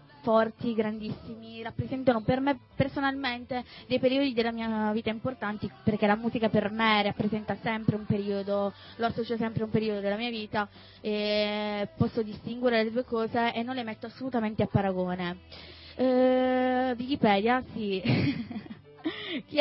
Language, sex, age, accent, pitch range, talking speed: Italian, female, 20-39, native, 210-245 Hz, 140 wpm